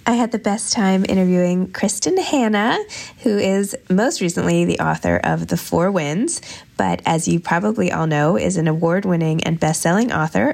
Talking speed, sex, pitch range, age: 170 wpm, female, 155-195 Hz, 20-39